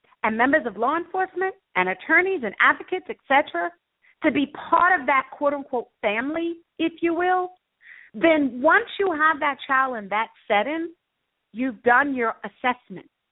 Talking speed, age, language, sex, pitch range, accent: 150 wpm, 50-69, English, female, 225-330 Hz, American